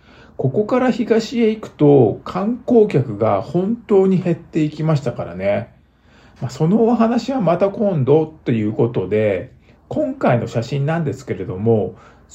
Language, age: Japanese, 50-69